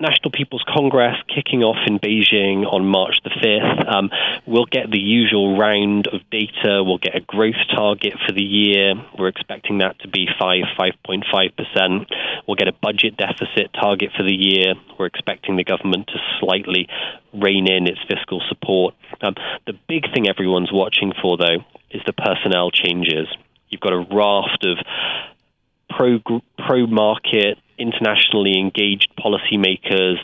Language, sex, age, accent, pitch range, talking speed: English, male, 20-39, British, 95-110 Hz, 155 wpm